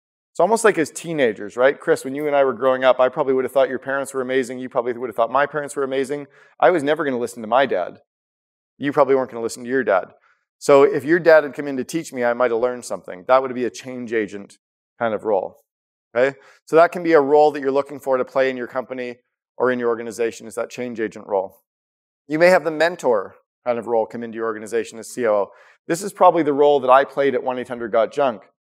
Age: 40-59